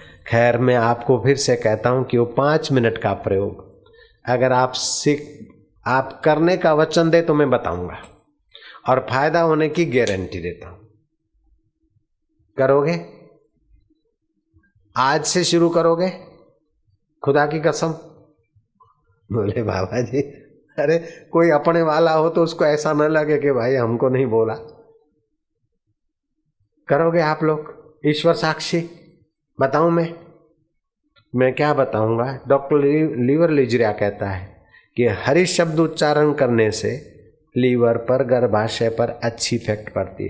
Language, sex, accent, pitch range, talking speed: Hindi, male, native, 115-160 Hz, 125 wpm